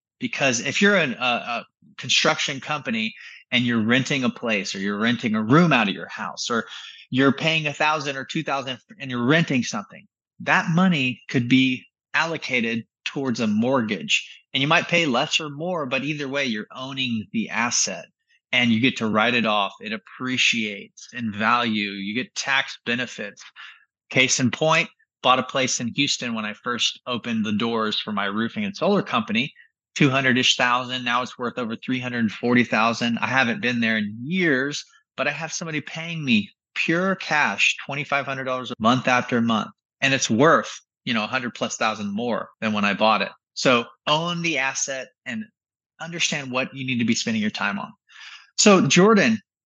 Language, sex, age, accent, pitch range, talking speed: English, male, 30-49, American, 125-180 Hz, 180 wpm